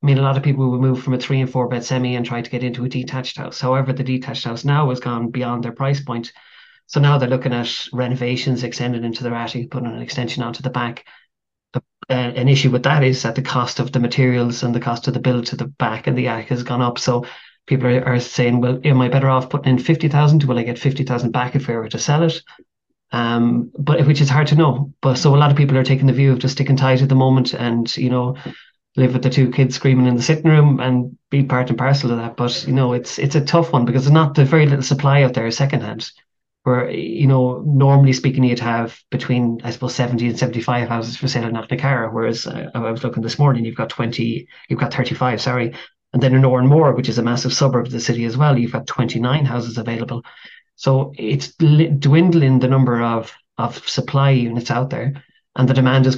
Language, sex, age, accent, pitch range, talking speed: English, male, 30-49, Irish, 120-135 Hz, 250 wpm